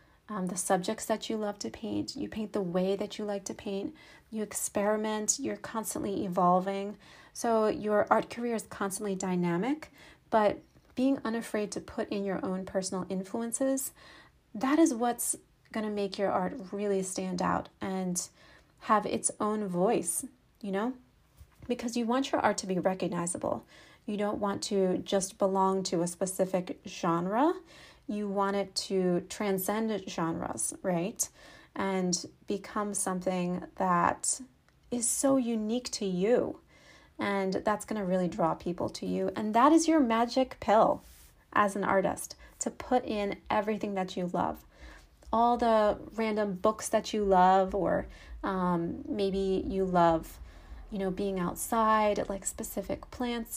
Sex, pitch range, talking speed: female, 190-225 Hz, 150 wpm